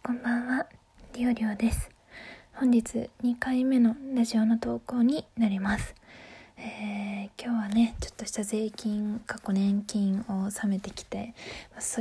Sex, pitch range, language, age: female, 220-265 Hz, Japanese, 20-39